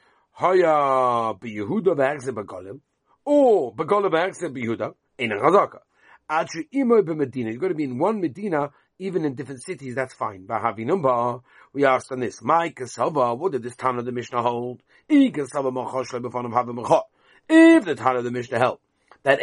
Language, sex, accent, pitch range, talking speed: English, male, British, 125-175 Hz, 115 wpm